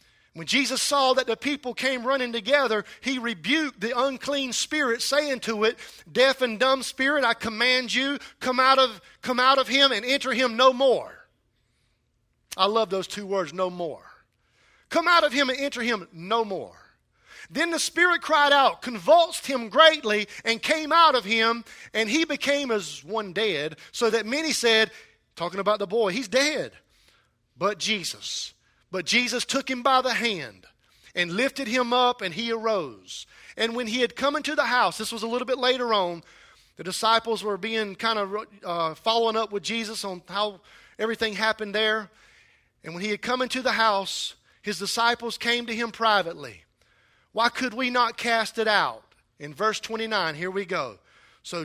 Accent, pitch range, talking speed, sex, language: American, 200-260 Hz, 180 wpm, male, English